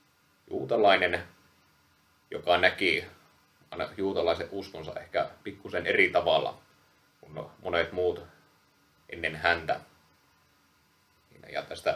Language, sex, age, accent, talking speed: Finnish, male, 30-49, native, 80 wpm